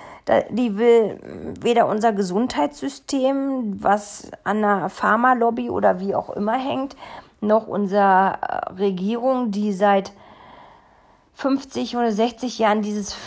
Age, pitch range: 40-59, 190-235 Hz